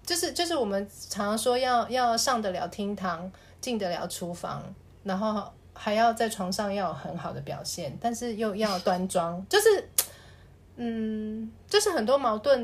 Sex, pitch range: female, 180-230 Hz